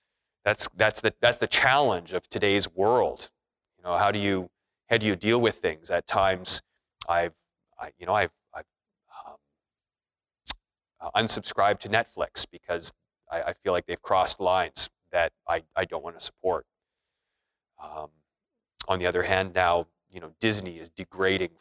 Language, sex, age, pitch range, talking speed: English, male, 30-49, 90-125 Hz, 160 wpm